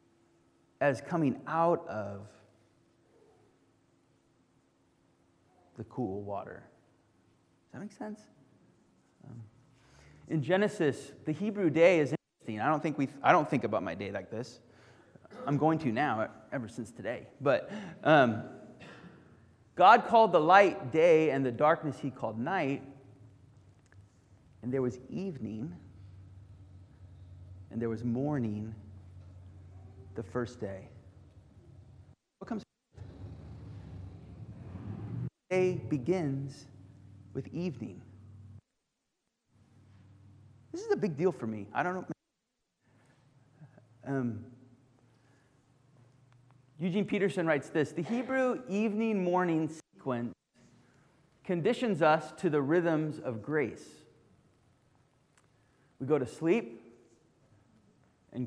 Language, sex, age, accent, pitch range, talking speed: English, male, 30-49, American, 100-155 Hz, 100 wpm